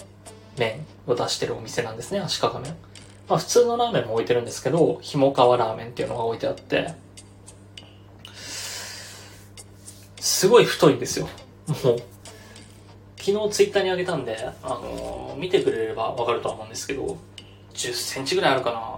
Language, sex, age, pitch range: Japanese, male, 20-39, 100-160 Hz